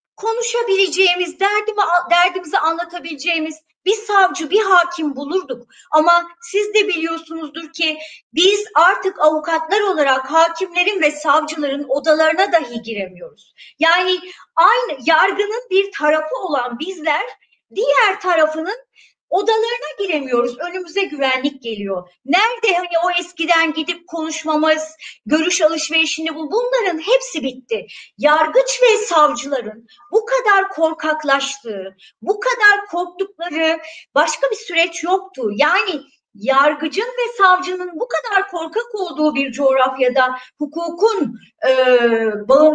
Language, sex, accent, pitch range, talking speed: Turkish, male, native, 300-395 Hz, 105 wpm